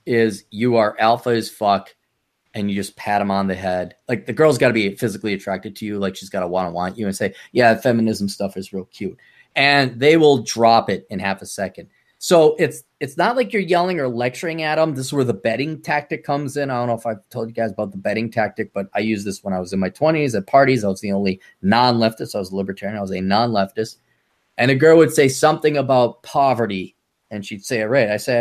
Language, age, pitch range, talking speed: English, 30-49, 110-150 Hz, 250 wpm